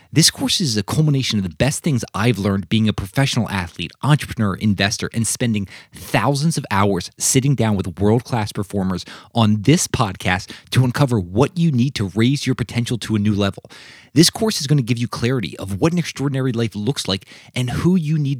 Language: English